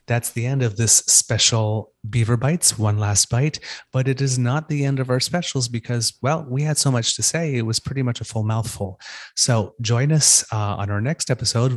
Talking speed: 220 wpm